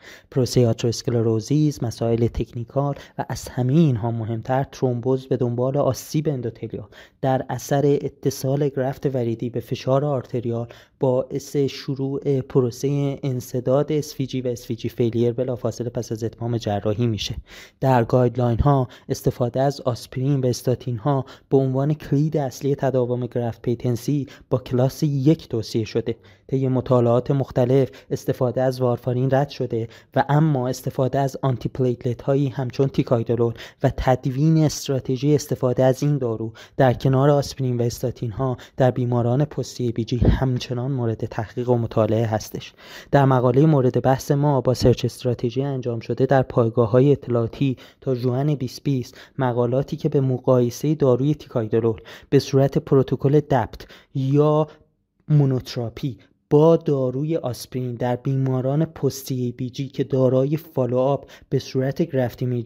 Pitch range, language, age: 120-140 Hz, Persian, 20-39